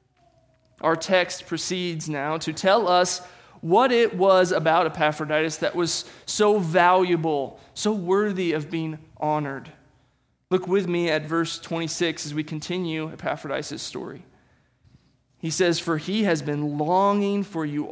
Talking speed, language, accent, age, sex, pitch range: 135 wpm, English, American, 20-39, male, 155-190 Hz